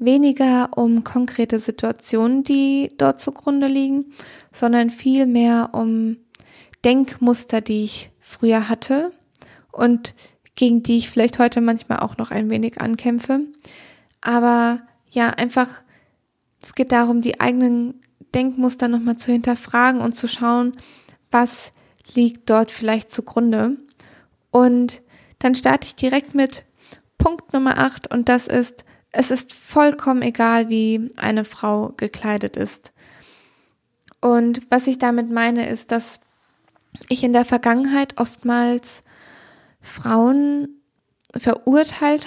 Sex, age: female, 20-39